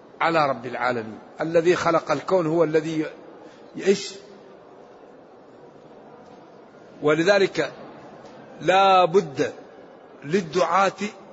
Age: 50-69